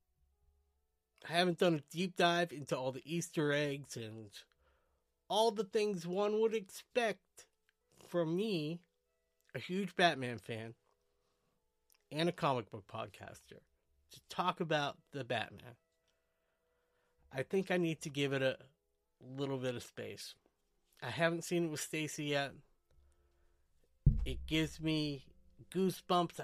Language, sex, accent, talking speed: English, male, American, 130 wpm